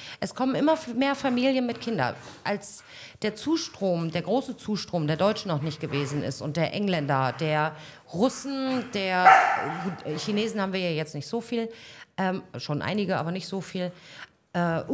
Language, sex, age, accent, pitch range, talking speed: German, female, 40-59, German, 150-205 Hz, 165 wpm